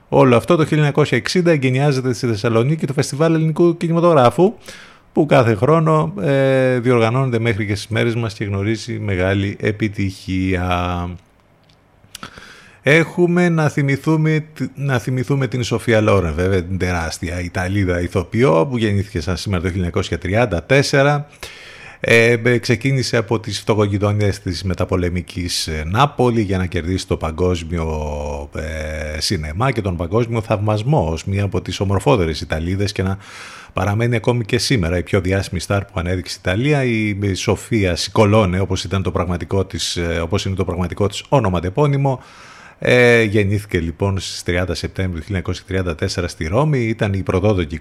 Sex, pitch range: male, 90-120 Hz